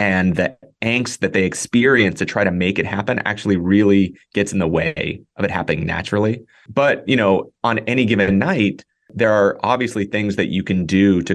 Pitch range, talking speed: 90-110 Hz, 200 wpm